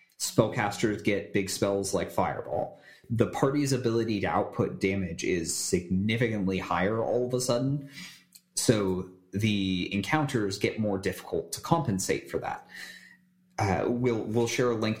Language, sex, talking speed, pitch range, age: English, male, 140 wpm, 95-120 Hz, 30-49